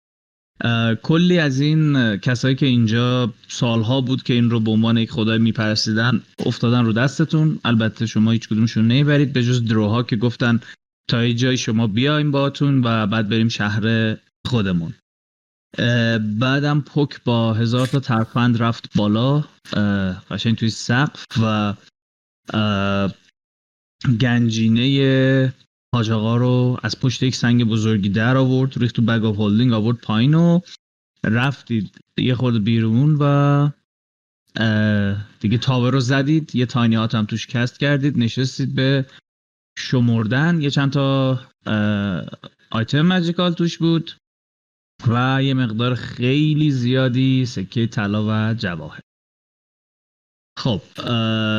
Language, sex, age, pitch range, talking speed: Persian, male, 30-49, 110-135 Hz, 115 wpm